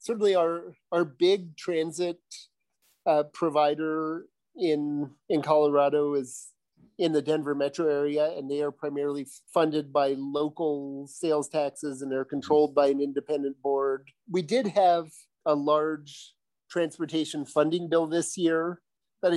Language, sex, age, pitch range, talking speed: English, male, 40-59, 145-165 Hz, 135 wpm